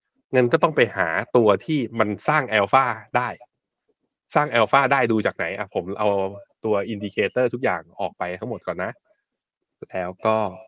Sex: male